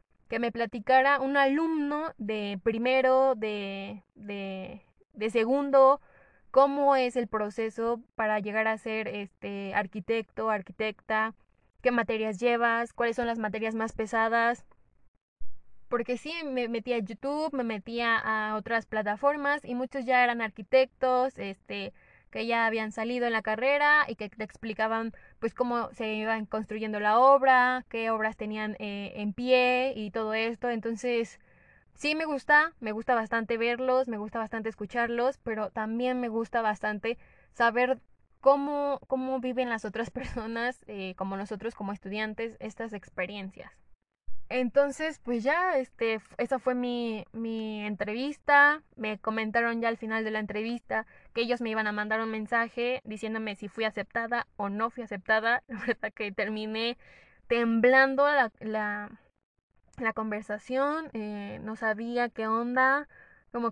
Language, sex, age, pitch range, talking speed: Spanish, female, 10-29, 215-250 Hz, 145 wpm